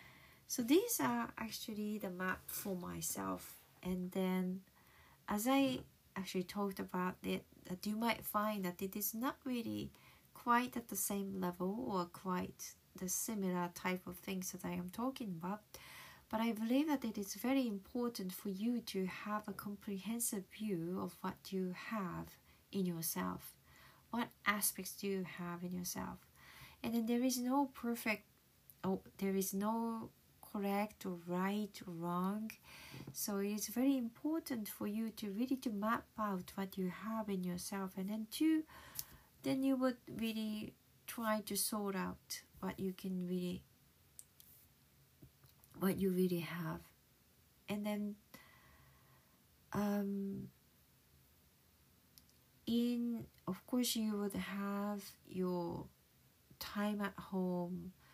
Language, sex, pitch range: Japanese, female, 185-225 Hz